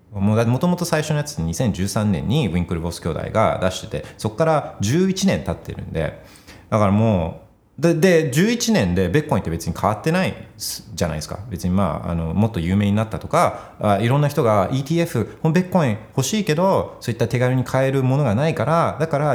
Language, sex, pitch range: Japanese, male, 90-125 Hz